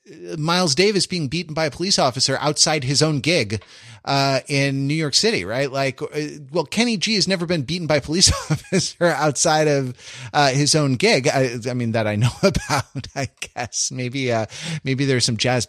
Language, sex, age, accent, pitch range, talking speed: English, male, 30-49, American, 120-155 Hz, 195 wpm